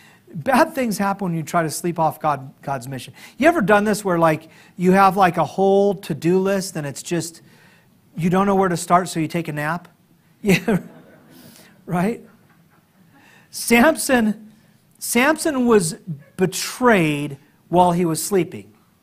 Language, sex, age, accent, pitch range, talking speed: English, male, 40-59, American, 160-205 Hz, 155 wpm